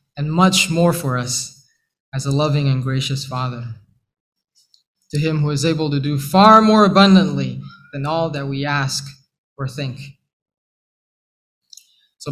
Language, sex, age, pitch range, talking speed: English, male, 20-39, 140-190 Hz, 140 wpm